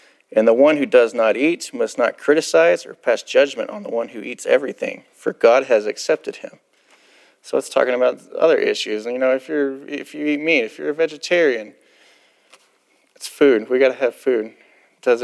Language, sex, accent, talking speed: English, male, American, 200 wpm